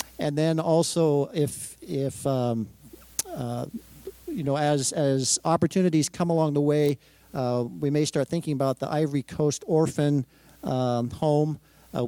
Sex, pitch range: male, 125-165 Hz